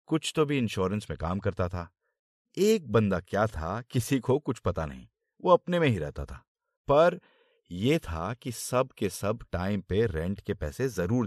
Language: Hindi